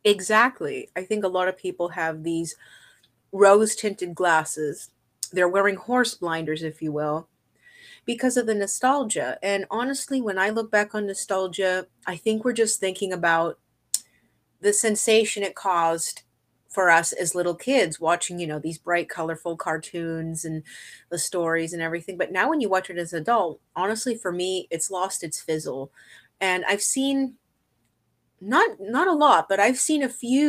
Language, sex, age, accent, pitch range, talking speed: English, female, 30-49, American, 165-215 Hz, 165 wpm